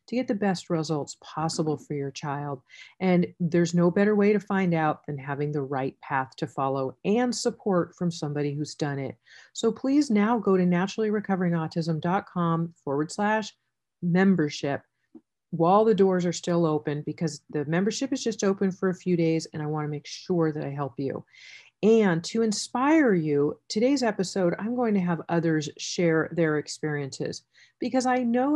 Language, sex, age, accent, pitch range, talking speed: English, female, 40-59, American, 160-215 Hz, 170 wpm